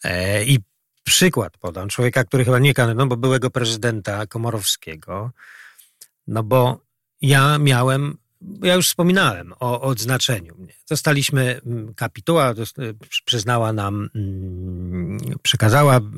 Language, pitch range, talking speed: Polish, 115-145 Hz, 110 wpm